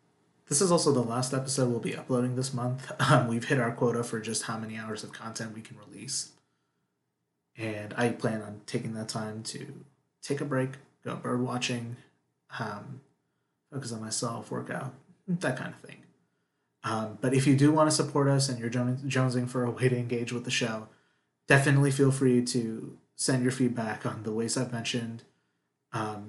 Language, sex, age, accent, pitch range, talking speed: English, male, 30-49, American, 110-135 Hz, 190 wpm